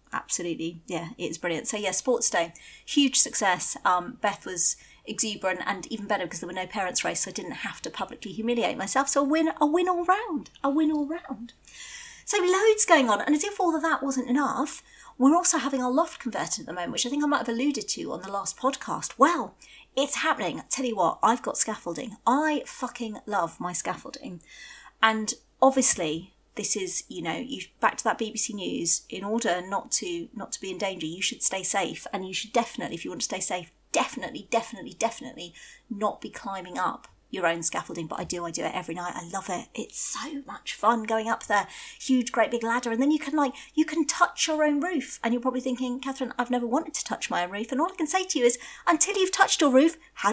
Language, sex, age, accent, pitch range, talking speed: English, female, 30-49, British, 200-290 Hz, 230 wpm